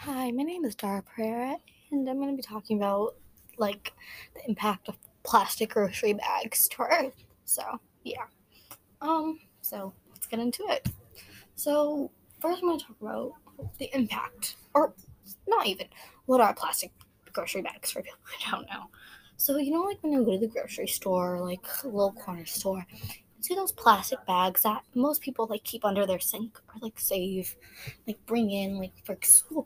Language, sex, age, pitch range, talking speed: English, female, 10-29, 200-270 Hz, 180 wpm